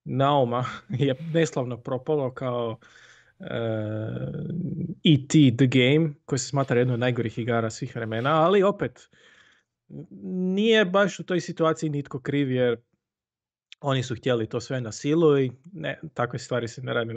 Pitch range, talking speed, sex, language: 120-150 Hz, 145 wpm, male, Croatian